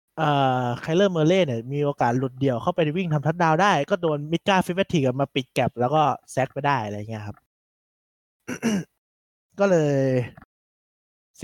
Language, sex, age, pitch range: Thai, male, 20-39, 130-170 Hz